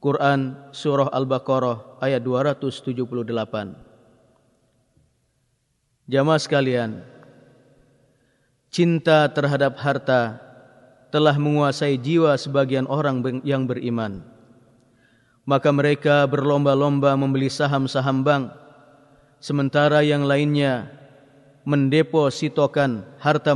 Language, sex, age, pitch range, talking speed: Indonesian, male, 30-49, 130-150 Hz, 70 wpm